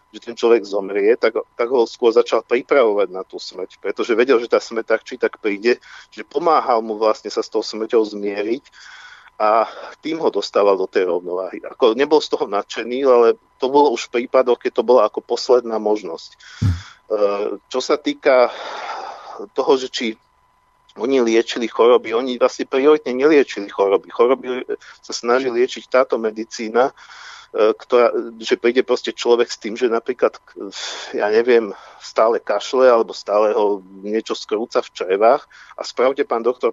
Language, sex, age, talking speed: Slovak, male, 50-69, 160 wpm